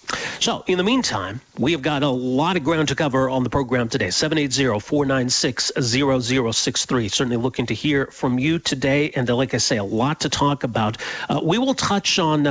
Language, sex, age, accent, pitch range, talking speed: English, male, 40-59, American, 125-155 Hz, 185 wpm